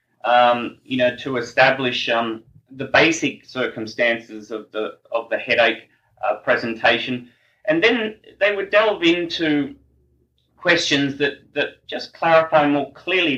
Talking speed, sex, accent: 130 wpm, male, Australian